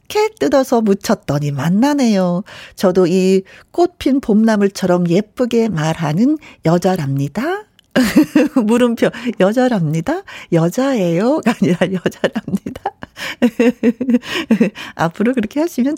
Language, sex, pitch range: Korean, female, 180-270 Hz